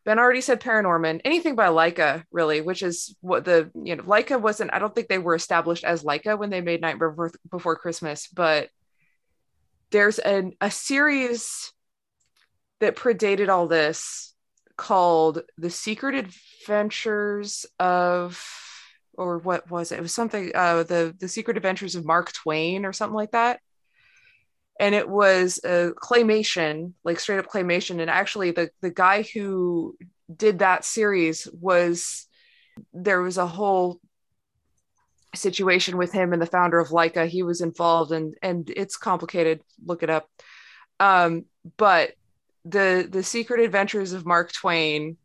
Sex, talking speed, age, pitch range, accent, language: female, 150 wpm, 20-39, 165-205 Hz, American, English